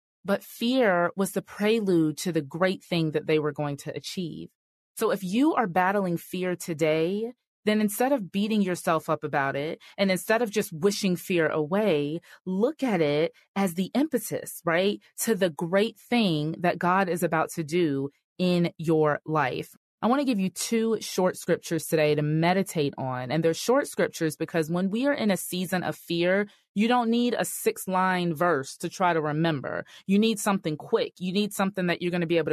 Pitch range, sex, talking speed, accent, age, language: 160-215 Hz, female, 195 wpm, American, 30-49, English